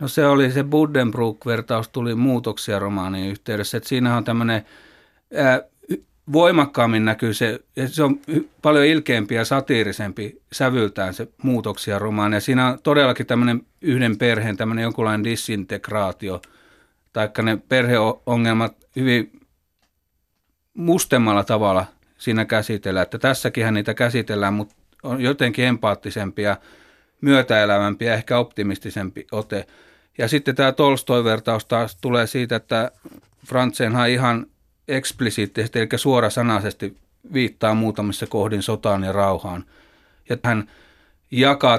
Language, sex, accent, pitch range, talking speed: Finnish, male, native, 105-125 Hz, 115 wpm